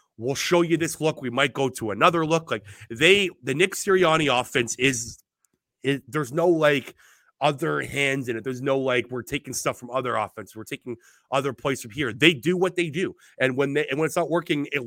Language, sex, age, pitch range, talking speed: English, male, 30-49, 115-160 Hz, 220 wpm